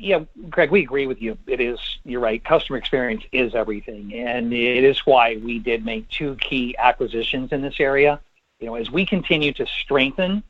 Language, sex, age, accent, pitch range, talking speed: English, male, 50-69, American, 125-160 Hz, 195 wpm